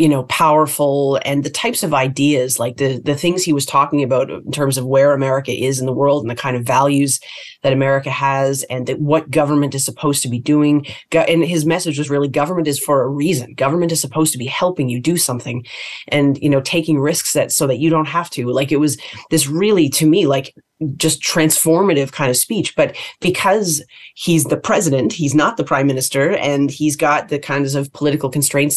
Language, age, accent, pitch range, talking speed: English, 30-49, American, 135-160 Hz, 215 wpm